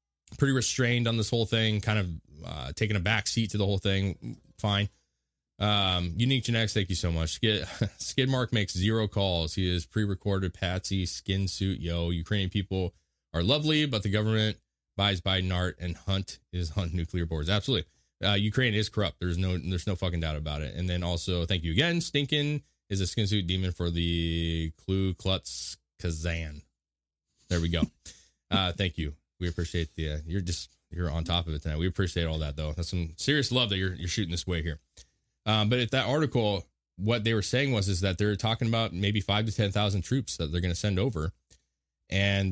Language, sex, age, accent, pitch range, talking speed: English, male, 20-39, American, 85-110 Hz, 205 wpm